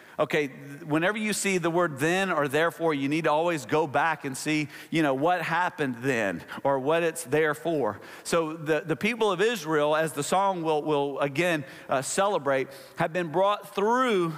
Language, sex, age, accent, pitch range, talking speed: English, male, 40-59, American, 160-200 Hz, 190 wpm